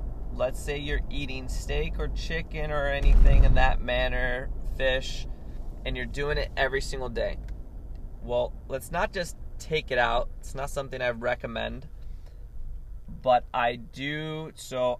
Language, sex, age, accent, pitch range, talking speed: English, male, 30-49, American, 120-140 Hz, 145 wpm